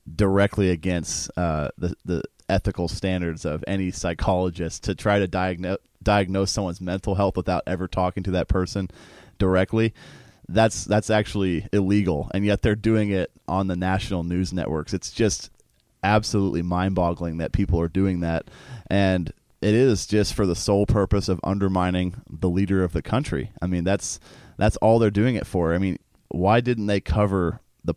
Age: 30-49